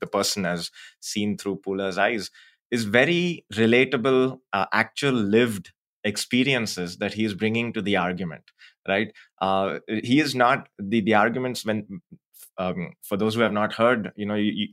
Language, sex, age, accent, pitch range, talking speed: Marathi, male, 20-39, native, 95-120 Hz, 165 wpm